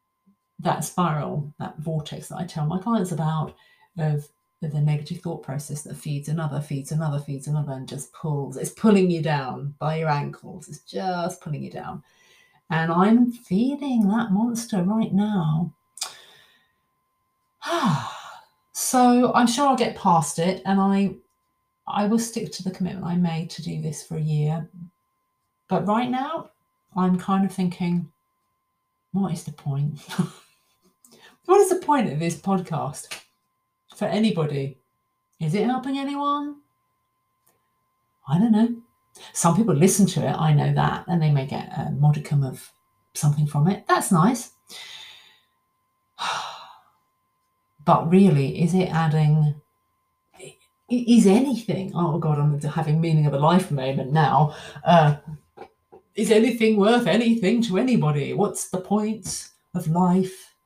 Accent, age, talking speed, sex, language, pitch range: British, 40-59, 145 wpm, female, English, 155-215 Hz